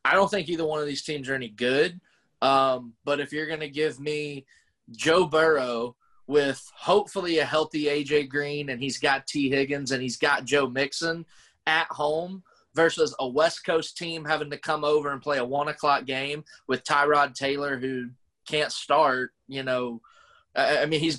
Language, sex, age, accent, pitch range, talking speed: English, male, 20-39, American, 135-155 Hz, 185 wpm